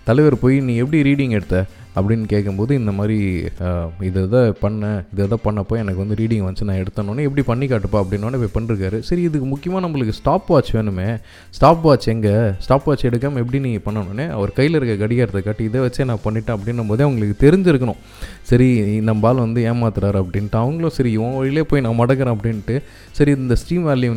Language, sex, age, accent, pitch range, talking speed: Tamil, male, 20-39, native, 105-135 Hz, 180 wpm